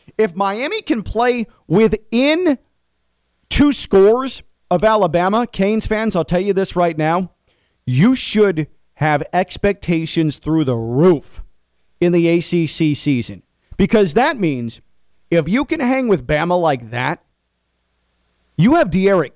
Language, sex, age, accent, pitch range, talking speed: English, male, 40-59, American, 120-200 Hz, 130 wpm